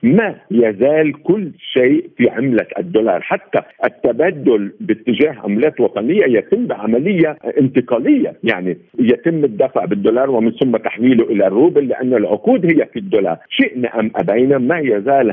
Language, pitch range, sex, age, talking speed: Arabic, 125-180 Hz, male, 50-69, 135 wpm